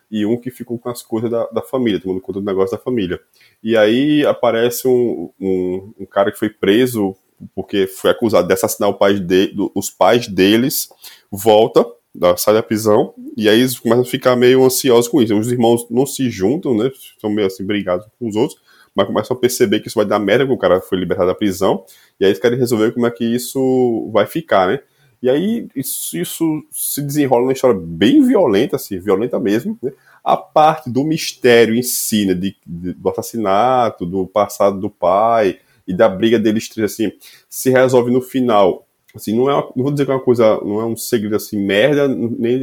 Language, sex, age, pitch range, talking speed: Portuguese, male, 10-29, 105-135 Hz, 210 wpm